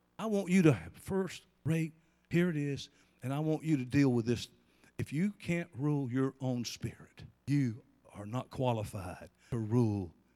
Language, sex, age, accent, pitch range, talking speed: English, male, 60-79, American, 135-225 Hz, 175 wpm